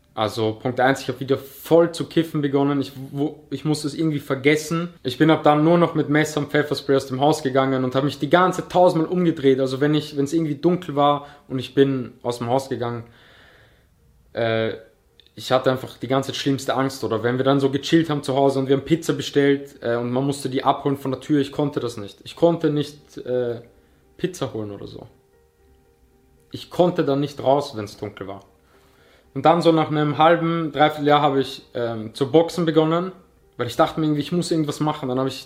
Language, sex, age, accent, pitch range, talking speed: German, male, 20-39, German, 125-155 Hz, 220 wpm